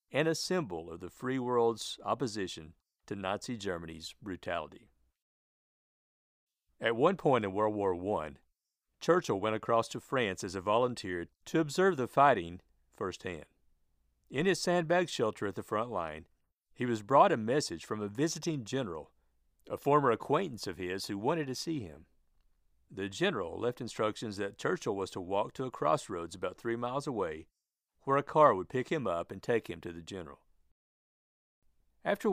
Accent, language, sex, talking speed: American, English, male, 165 wpm